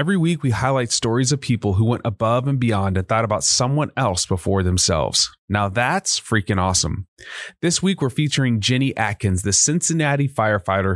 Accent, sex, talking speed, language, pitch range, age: American, male, 175 wpm, English, 105-135 Hz, 30-49